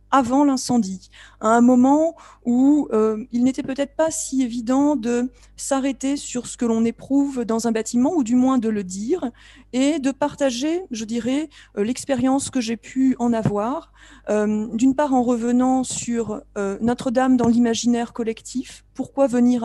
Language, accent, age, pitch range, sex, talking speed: French, French, 40-59, 225-275 Hz, female, 165 wpm